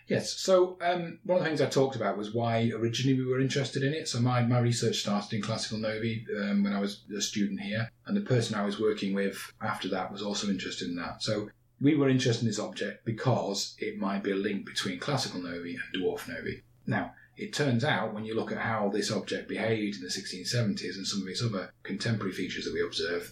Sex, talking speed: male, 235 wpm